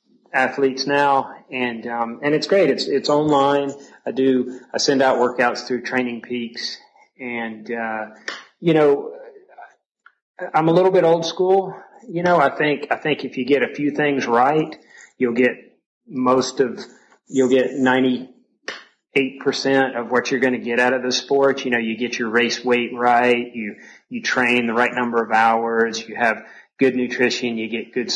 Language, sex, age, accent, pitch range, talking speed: English, male, 30-49, American, 120-135 Hz, 175 wpm